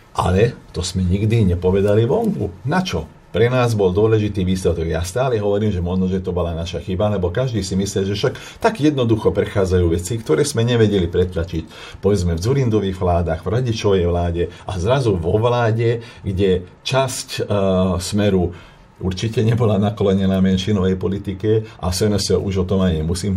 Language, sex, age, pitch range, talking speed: Slovak, male, 50-69, 95-115 Hz, 160 wpm